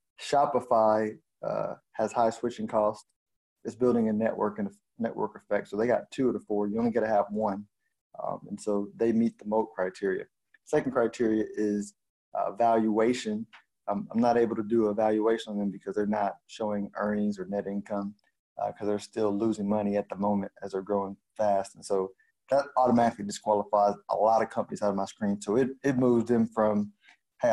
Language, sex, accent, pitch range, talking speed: English, male, American, 100-110 Hz, 200 wpm